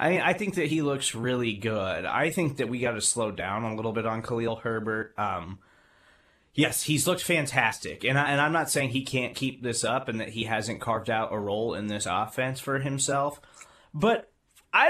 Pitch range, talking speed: 115-160 Hz, 210 wpm